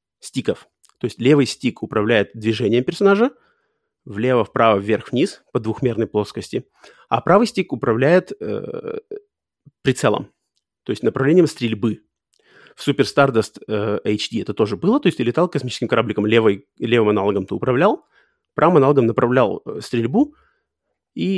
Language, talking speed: Russian, 135 wpm